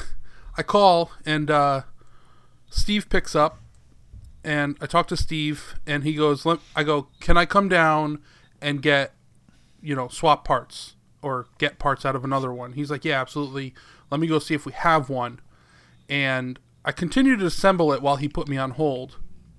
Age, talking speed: 20-39, 180 wpm